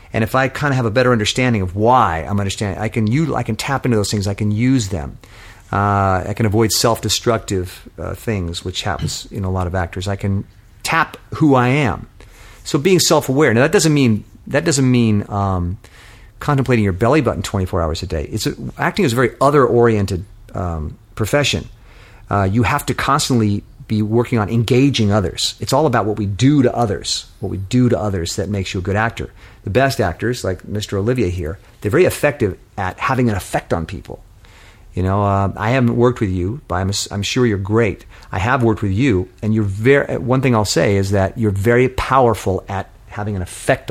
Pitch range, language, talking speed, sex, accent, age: 100-120 Hz, English, 200 wpm, male, American, 40-59